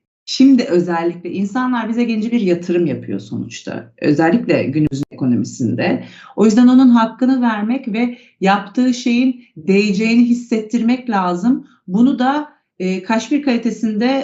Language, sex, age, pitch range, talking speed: Turkish, female, 40-59, 175-235 Hz, 120 wpm